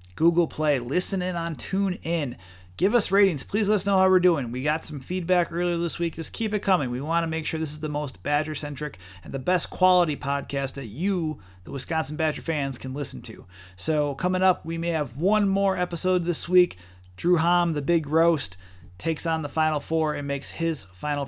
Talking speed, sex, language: 215 wpm, male, English